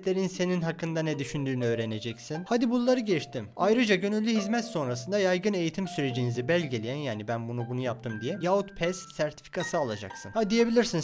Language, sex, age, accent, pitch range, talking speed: Turkish, male, 30-49, native, 125-190 Hz, 150 wpm